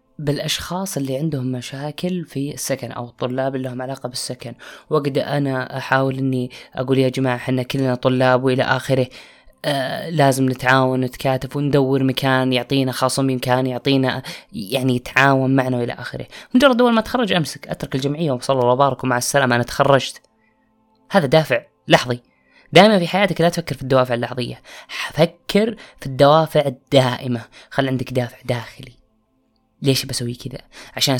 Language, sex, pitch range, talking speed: Arabic, female, 130-170 Hz, 145 wpm